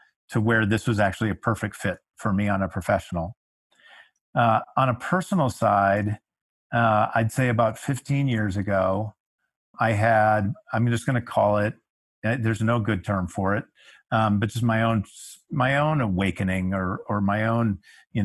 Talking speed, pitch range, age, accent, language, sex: 170 wpm, 100-115 Hz, 50-69, American, English, male